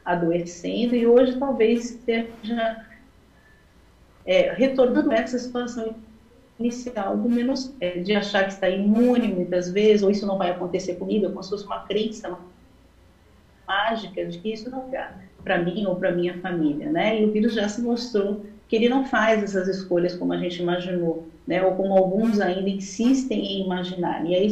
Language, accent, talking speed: Portuguese, Brazilian, 175 wpm